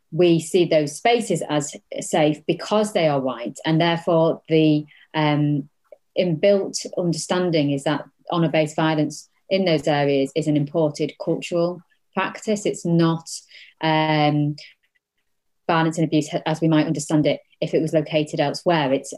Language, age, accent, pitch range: English, 30-49, British, 145-170 Hz